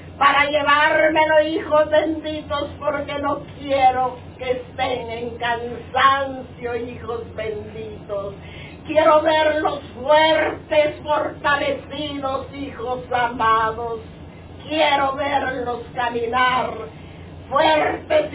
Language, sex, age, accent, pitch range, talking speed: Spanish, female, 50-69, American, 250-315 Hz, 75 wpm